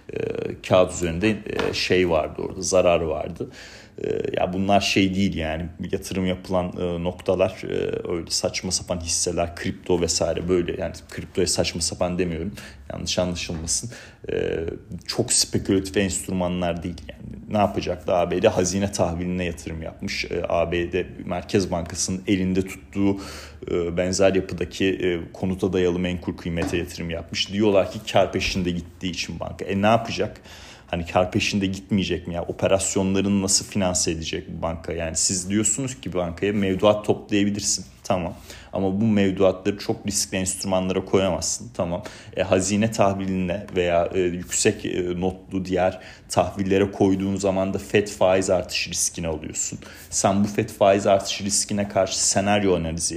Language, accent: Turkish, native